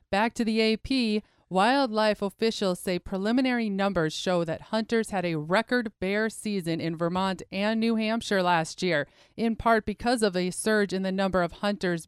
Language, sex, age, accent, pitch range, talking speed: English, female, 30-49, American, 185-225 Hz, 175 wpm